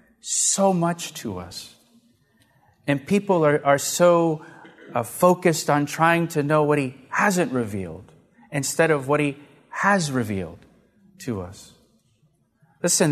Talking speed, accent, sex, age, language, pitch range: 130 wpm, American, male, 40-59, English, 140-190 Hz